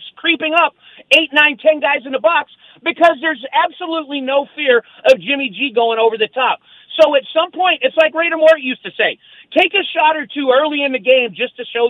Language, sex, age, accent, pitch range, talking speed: English, male, 40-59, American, 245-315 Hz, 220 wpm